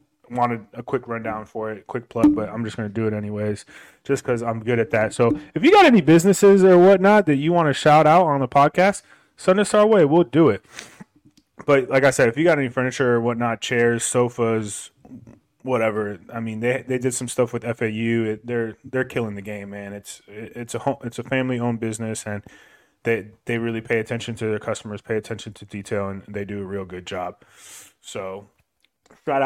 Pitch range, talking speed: 105-130 Hz, 220 wpm